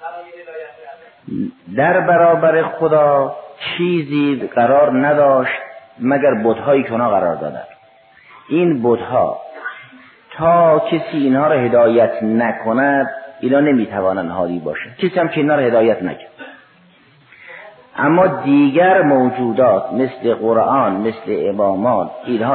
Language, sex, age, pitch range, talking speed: Persian, male, 50-69, 115-160 Hz, 100 wpm